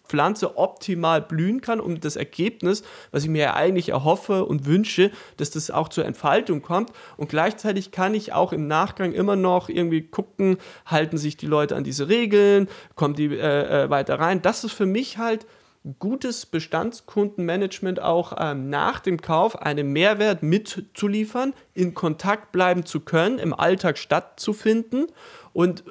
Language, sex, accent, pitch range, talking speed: German, male, German, 160-205 Hz, 155 wpm